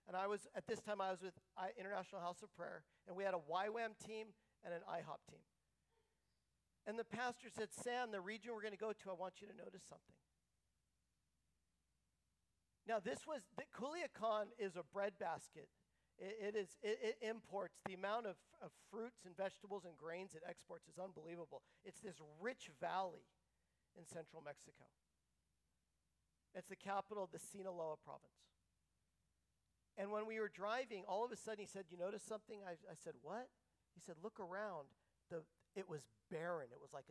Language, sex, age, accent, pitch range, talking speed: English, male, 50-69, American, 165-215 Hz, 180 wpm